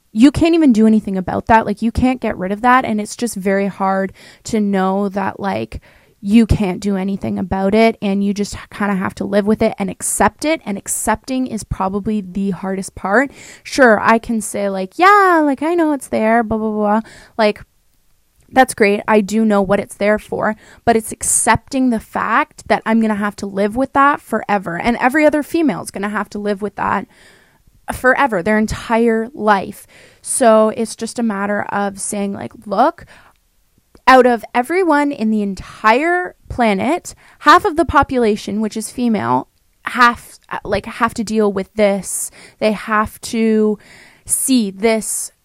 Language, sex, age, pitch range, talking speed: English, female, 20-39, 200-235 Hz, 185 wpm